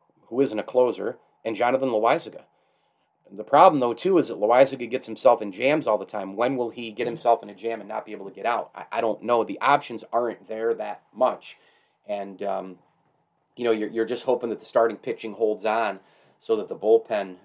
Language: English